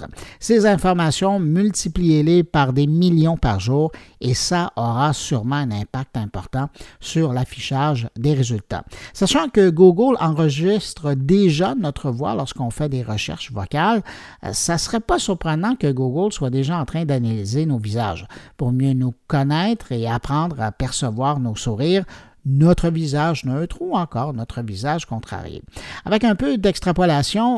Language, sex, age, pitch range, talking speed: French, male, 60-79, 130-185 Hz, 145 wpm